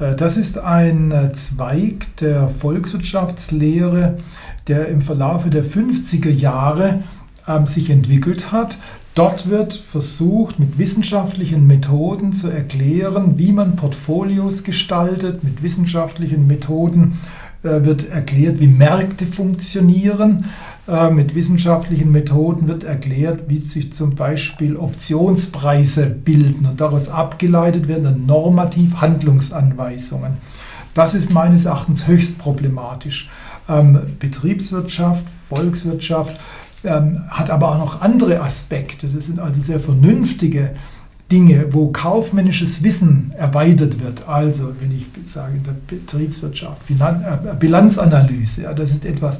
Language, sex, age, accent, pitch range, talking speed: German, male, 60-79, German, 145-175 Hz, 115 wpm